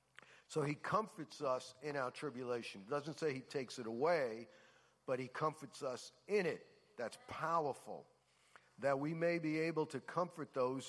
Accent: American